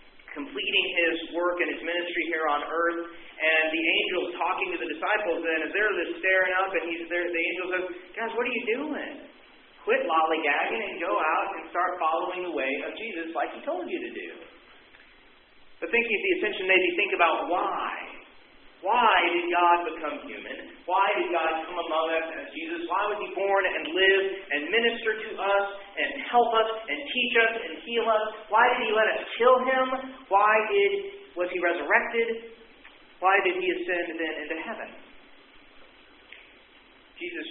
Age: 40-59